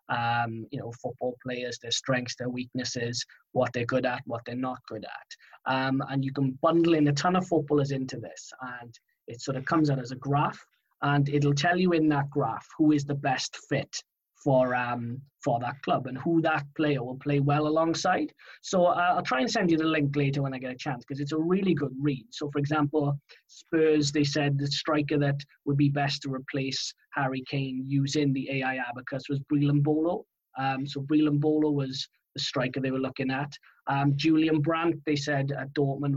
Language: English